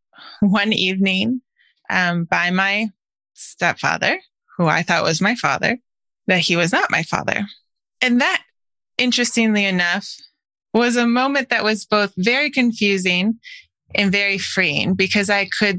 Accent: American